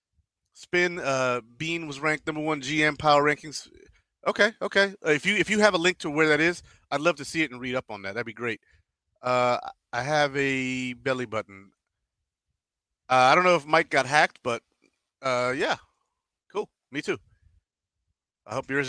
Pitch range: 115-160 Hz